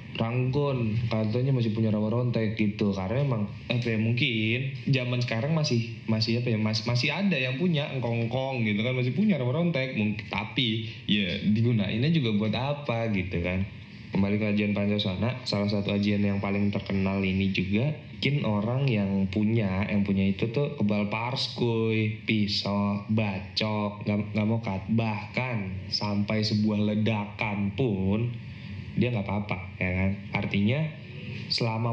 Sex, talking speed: male, 145 wpm